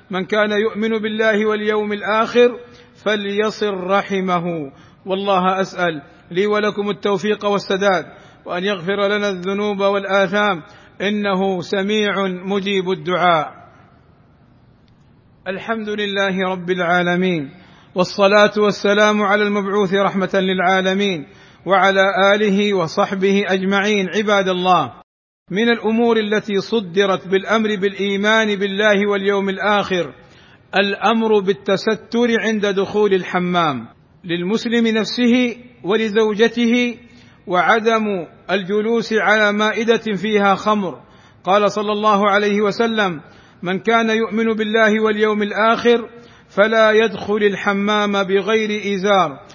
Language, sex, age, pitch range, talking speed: Arabic, male, 50-69, 190-215 Hz, 95 wpm